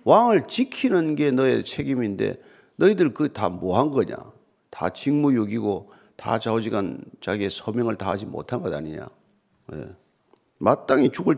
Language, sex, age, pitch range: Korean, male, 50-69, 115-190 Hz